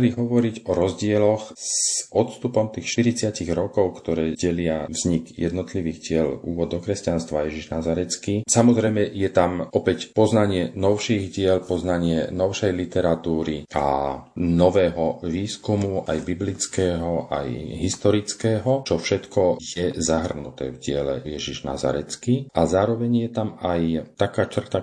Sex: male